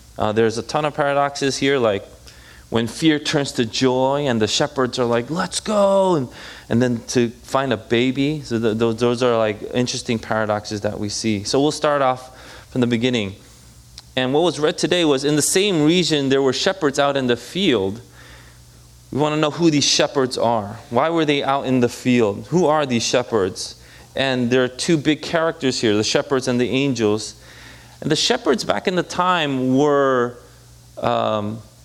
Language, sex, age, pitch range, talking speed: English, male, 20-39, 115-145 Hz, 190 wpm